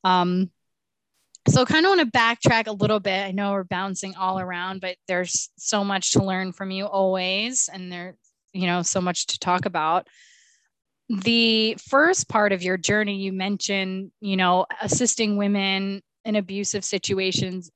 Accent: American